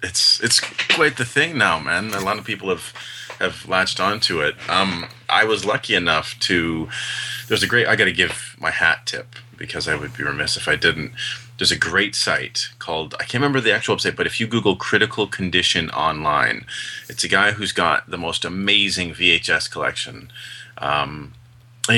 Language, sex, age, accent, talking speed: English, male, 30-49, American, 190 wpm